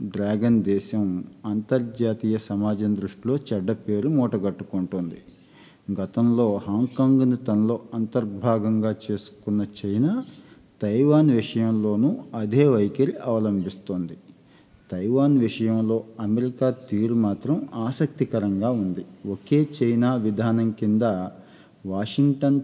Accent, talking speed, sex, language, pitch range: native, 80 wpm, male, Telugu, 105-125 Hz